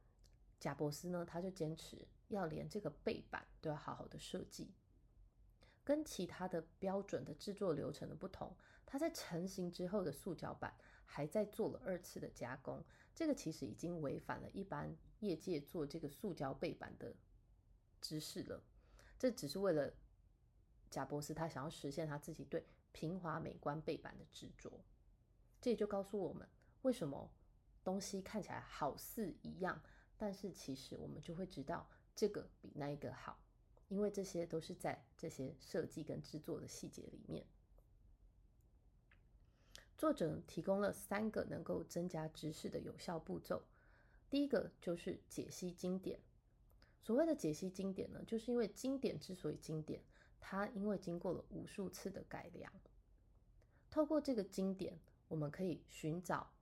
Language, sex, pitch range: Chinese, female, 150-200 Hz